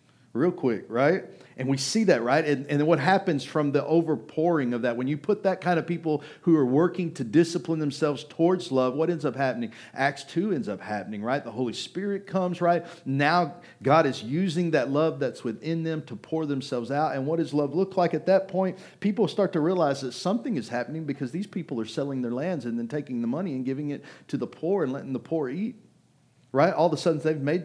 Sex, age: male, 40-59